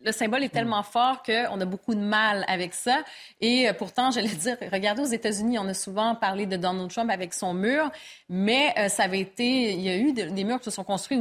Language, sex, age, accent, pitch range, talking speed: French, female, 30-49, Canadian, 210-265 Hz, 235 wpm